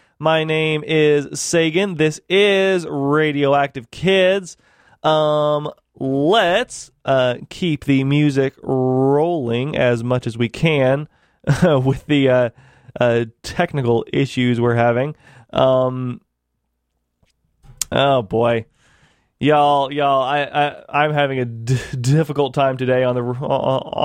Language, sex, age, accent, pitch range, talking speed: English, male, 20-39, American, 125-155 Hz, 115 wpm